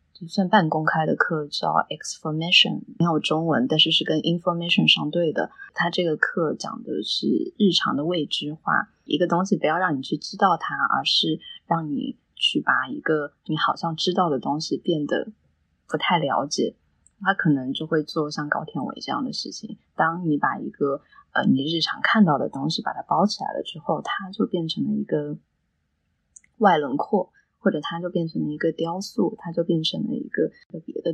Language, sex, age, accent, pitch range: Chinese, female, 20-39, native, 145-180 Hz